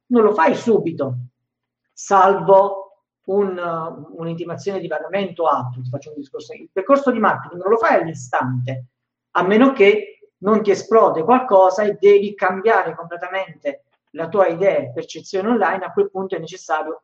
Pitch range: 150-205 Hz